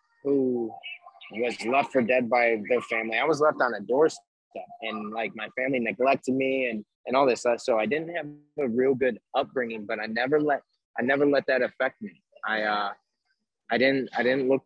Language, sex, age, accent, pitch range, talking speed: English, male, 20-39, American, 105-130 Hz, 205 wpm